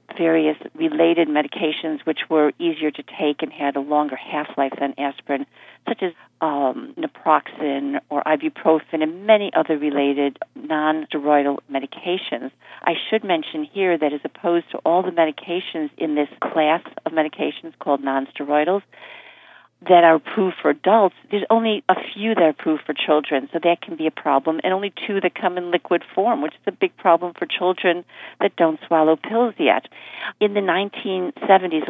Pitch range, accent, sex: 150-180 Hz, American, female